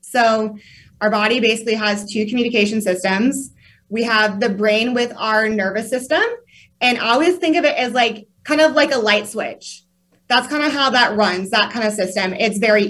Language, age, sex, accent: English, 20-39, female, American